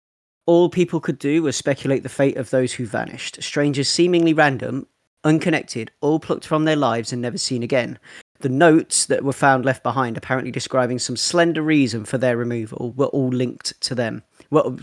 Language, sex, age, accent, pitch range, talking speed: English, male, 30-49, British, 125-150 Hz, 185 wpm